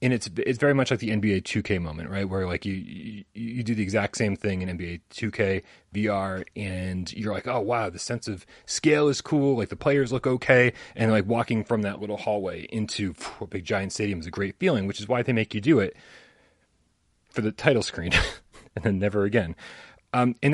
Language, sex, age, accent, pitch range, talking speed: English, male, 30-49, American, 95-120 Hz, 220 wpm